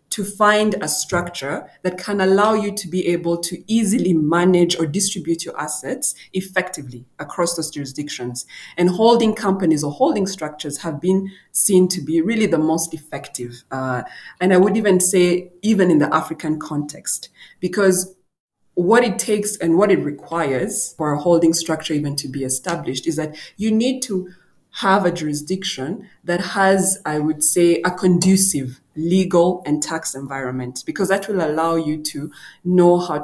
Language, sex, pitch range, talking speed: English, female, 145-185 Hz, 165 wpm